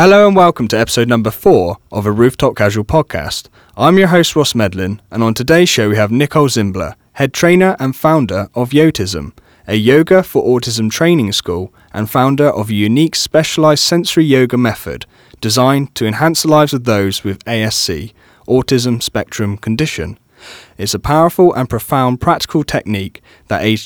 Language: English